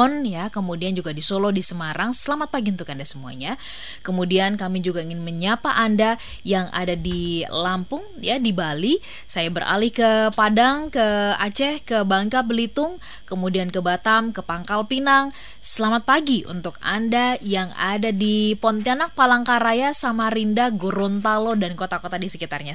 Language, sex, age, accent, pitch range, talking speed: Indonesian, female, 20-39, native, 185-245 Hz, 145 wpm